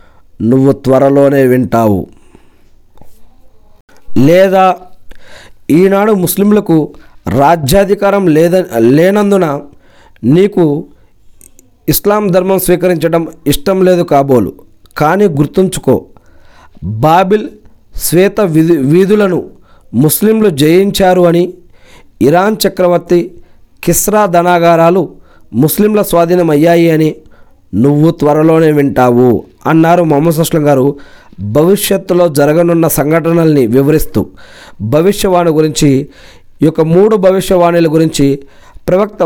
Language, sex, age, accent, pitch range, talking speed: Telugu, male, 40-59, native, 135-180 Hz, 75 wpm